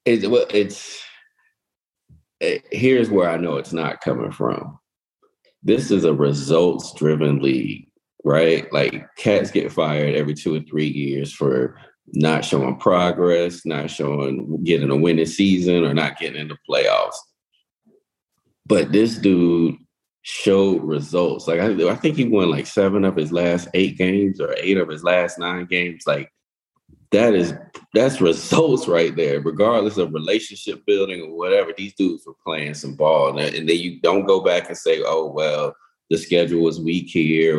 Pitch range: 80-115 Hz